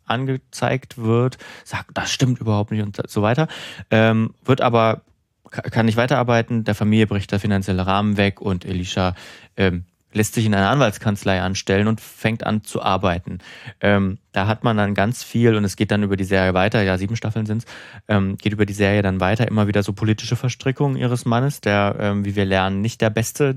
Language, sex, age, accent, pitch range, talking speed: German, male, 30-49, German, 100-120 Hz, 200 wpm